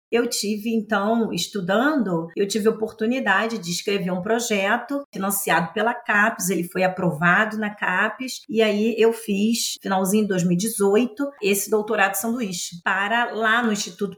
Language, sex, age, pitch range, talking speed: Portuguese, female, 40-59, 195-250 Hz, 145 wpm